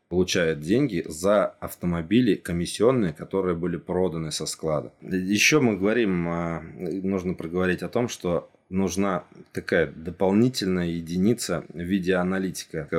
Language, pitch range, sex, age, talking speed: Russian, 80-95 Hz, male, 20-39, 115 wpm